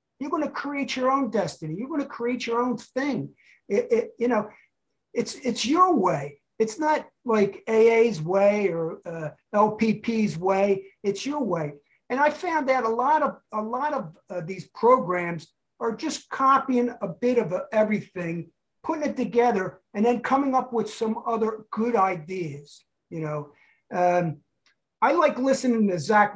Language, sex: English, male